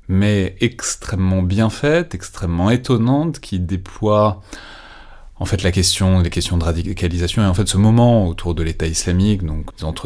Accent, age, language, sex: French, 30-49, French, male